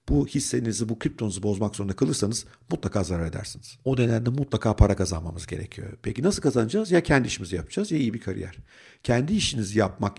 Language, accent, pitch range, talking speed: Turkish, native, 100-135 Hz, 175 wpm